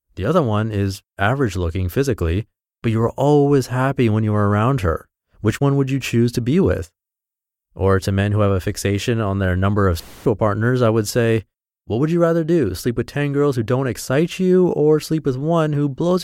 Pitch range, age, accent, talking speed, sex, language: 100-135 Hz, 30-49, American, 220 wpm, male, English